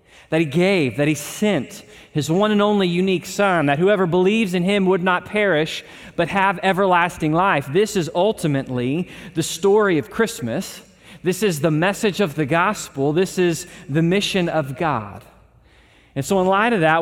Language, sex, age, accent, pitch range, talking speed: English, male, 30-49, American, 160-200 Hz, 175 wpm